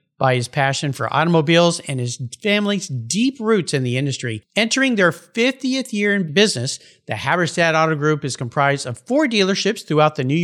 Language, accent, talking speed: English, American, 180 wpm